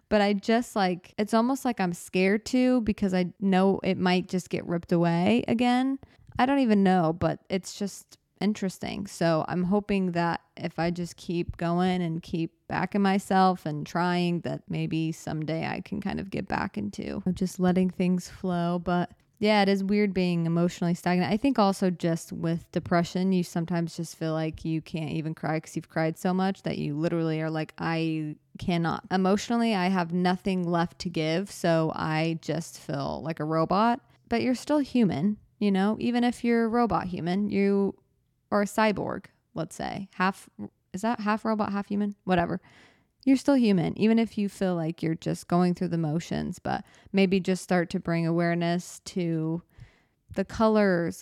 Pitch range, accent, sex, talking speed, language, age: 170-205 Hz, American, female, 185 wpm, English, 20-39